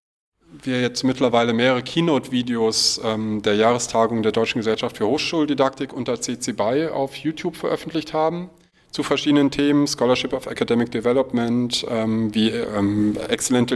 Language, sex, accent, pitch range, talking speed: German, male, German, 110-130 Hz, 130 wpm